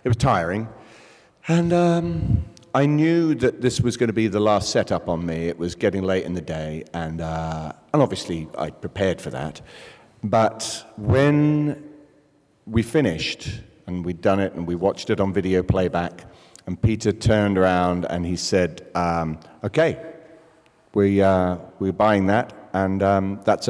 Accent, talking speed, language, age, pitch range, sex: British, 165 wpm, English, 40-59, 95-130 Hz, male